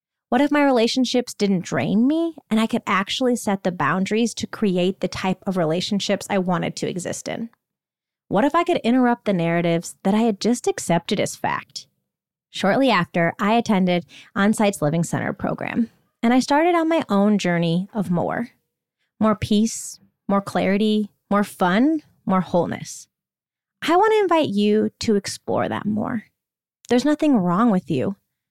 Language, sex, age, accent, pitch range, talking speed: English, female, 20-39, American, 180-240 Hz, 165 wpm